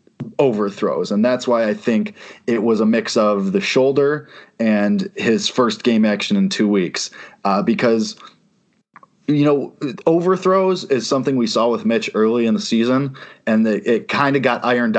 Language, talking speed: English, 170 wpm